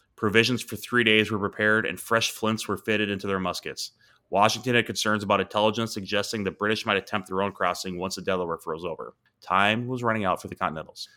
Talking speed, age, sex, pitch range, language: 210 wpm, 30-49, male, 95-110 Hz, English